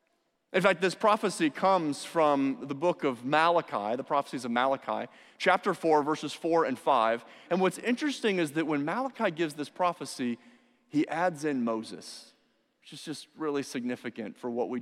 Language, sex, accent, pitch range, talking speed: English, male, American, 155-235 Hz, 170 wpm